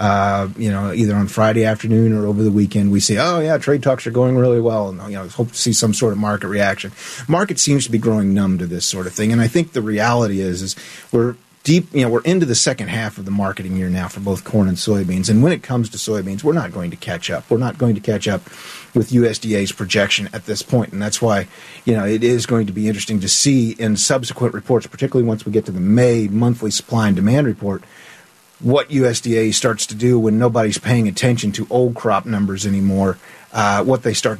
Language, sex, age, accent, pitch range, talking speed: English, male, 40-59, American, 100-120 Hz, 240 wpm